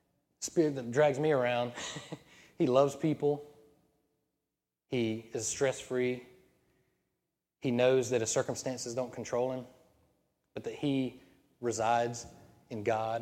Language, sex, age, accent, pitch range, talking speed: English, male, 20-39, American, 125-155 Hz, 120 wpm